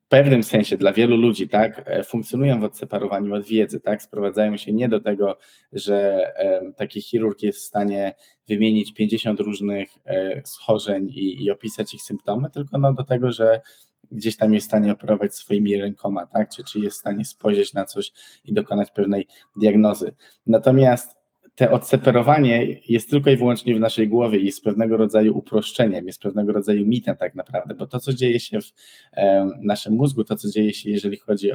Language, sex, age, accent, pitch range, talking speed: Polish, male, 20-39, native, 105-125 Hz, 180 wpm